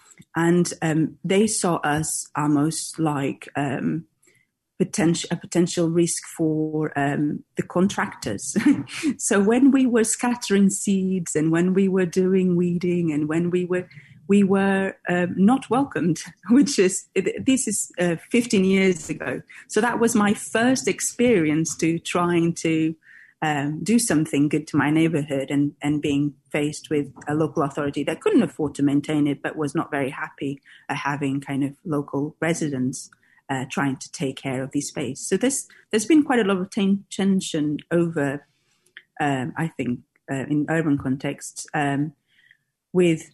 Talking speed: 155 wpm